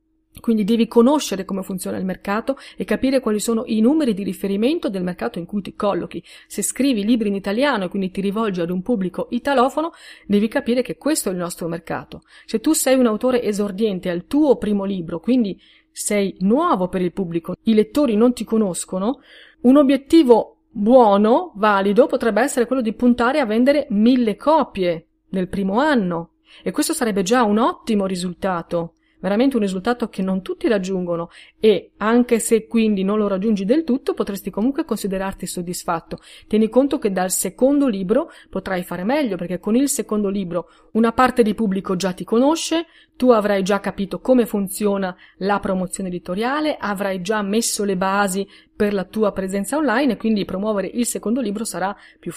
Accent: native